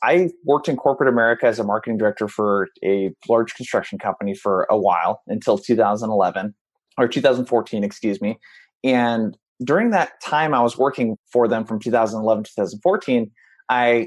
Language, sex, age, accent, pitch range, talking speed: English, male, 30-49, American, 110-135 Hz, 155 wpm